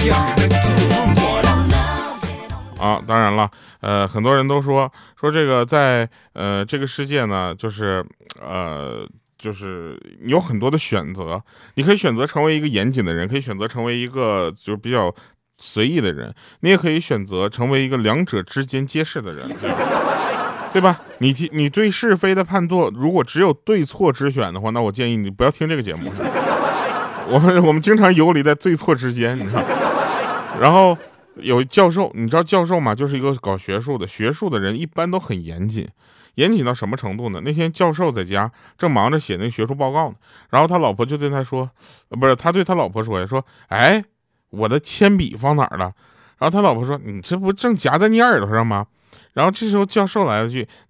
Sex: male